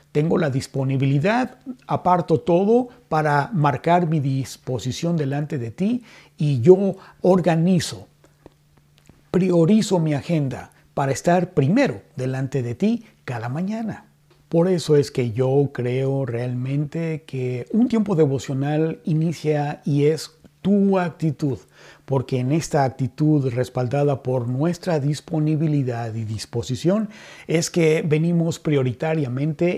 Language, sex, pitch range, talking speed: Spanish, male, 130-170 Hz, 115 wpm